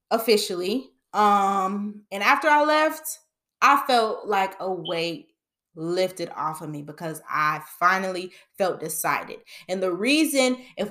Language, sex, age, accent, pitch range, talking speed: English, female, 20-39, American, 185-250 Hz, 130 wpm